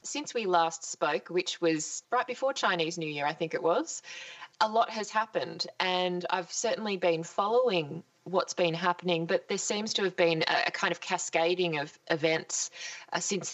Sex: female